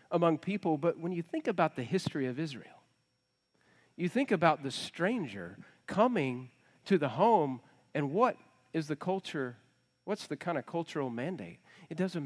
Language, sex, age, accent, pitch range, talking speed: English, male, 40-59, American, 130-170 Hz, 160 wpm